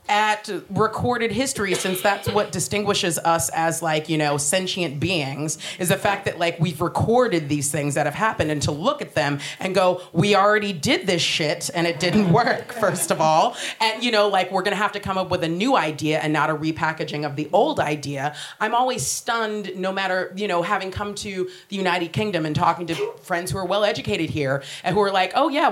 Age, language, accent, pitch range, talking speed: 30-49, English, American, 155-205 Hz, 225 wpm